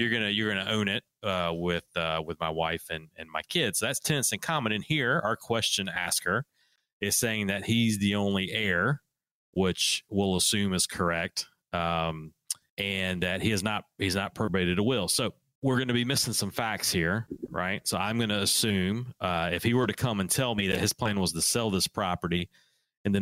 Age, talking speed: 30-49, 210 wpm